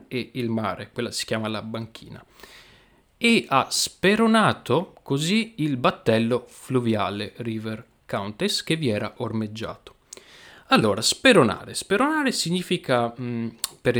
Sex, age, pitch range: male, 30-49, 115-140 Hz